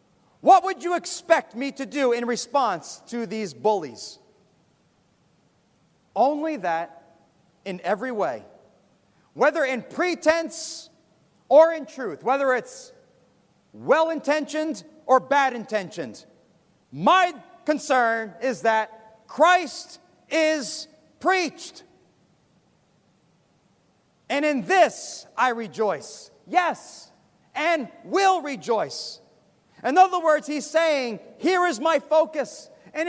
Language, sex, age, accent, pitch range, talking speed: English, male, 40-59, American, 240-335 Hz, 100 wpm